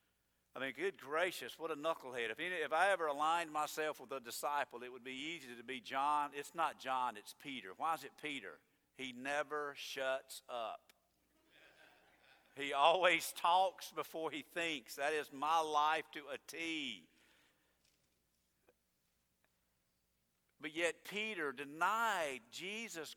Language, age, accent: English, 50-69, American